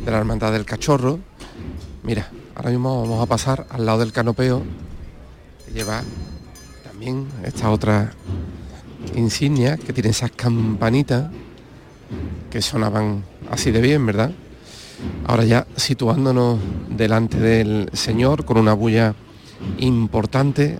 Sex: male